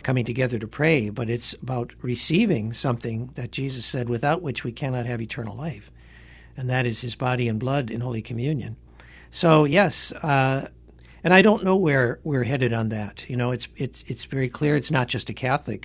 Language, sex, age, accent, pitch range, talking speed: English, male, 60-79, American, 115-140 Hz, 200 wpm